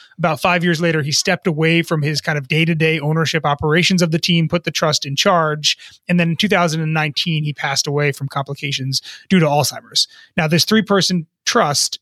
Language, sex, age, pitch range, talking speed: English, male, 30-49, 155-185 Hz, 190 wpm